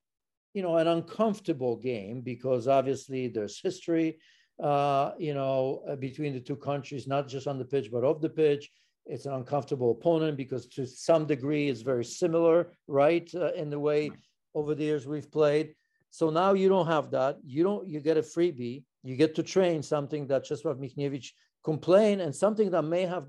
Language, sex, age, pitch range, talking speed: English, male, 50-69, 130-160 Hz, 190 wpm